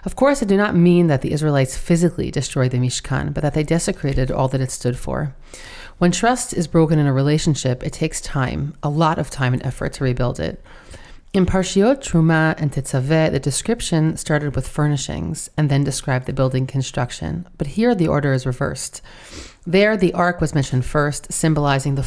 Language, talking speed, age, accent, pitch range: English, 195 wpm, 30-49, American, 130-175 Hz